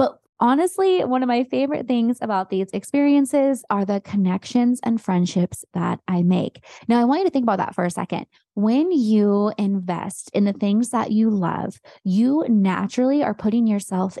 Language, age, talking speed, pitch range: English, 20-39, 175 wpm, 190-245 Hz